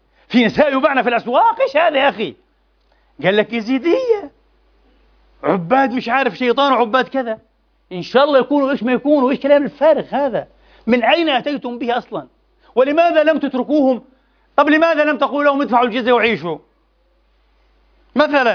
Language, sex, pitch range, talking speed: Arabic, male, 225-285 Hz, 150 wpm